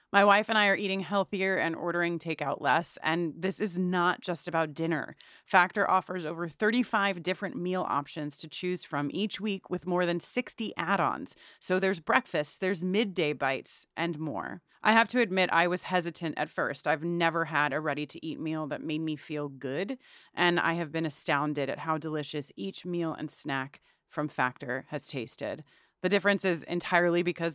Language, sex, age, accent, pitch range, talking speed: English, female, 30-49, American, 155-190 Hz, 185 wpm